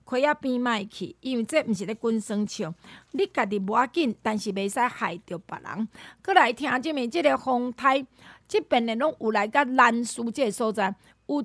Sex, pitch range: female, 220-320 Hz